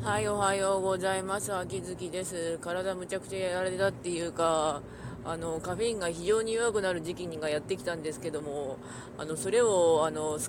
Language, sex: Japanese, female